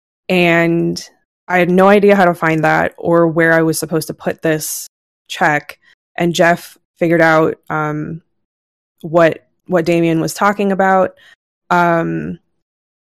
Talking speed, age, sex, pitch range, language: 140 wpm, 20-39, female, 160-175 Hz, English